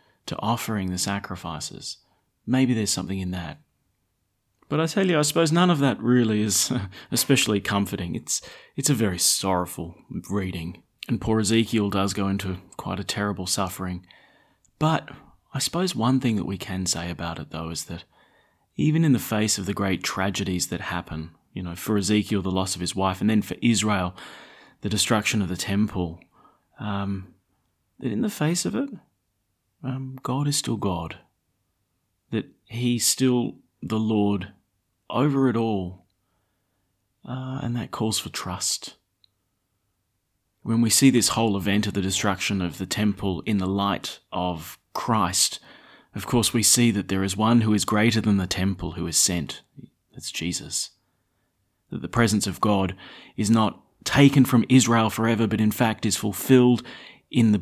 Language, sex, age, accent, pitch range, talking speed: English, male, 30-49, Australian, 95-115 Hz, 165 wpm